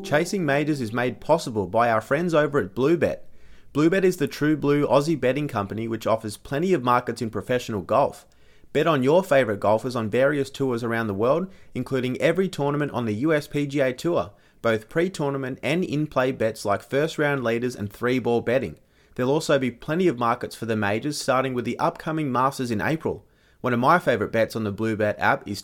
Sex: male